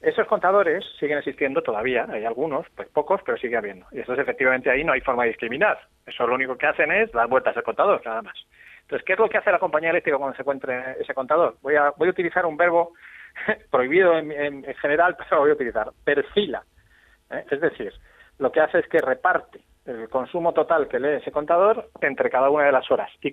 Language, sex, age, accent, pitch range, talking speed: Spanish, male, 30-49, Spanish, 135-190 Hz, 220 wpm